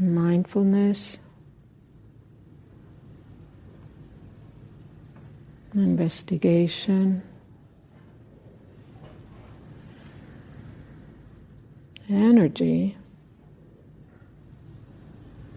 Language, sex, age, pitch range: English, female, 60-79, 130-180 Hz